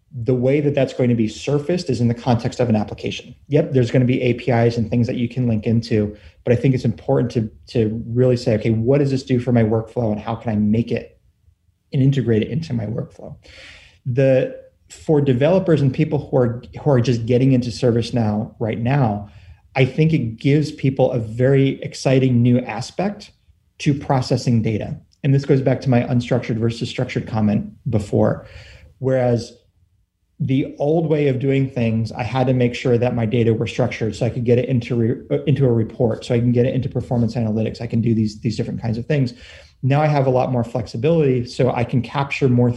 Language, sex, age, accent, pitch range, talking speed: English, male, 30-49, American, 115-135 Hz, 215 wpm